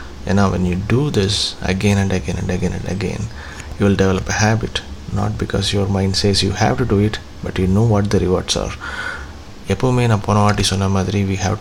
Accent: native